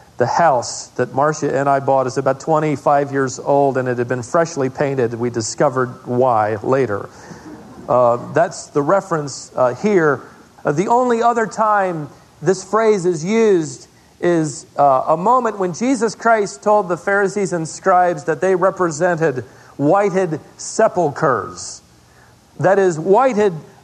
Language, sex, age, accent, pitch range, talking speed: English, male, 40-59, American, 155-220 Hz, 145 wpm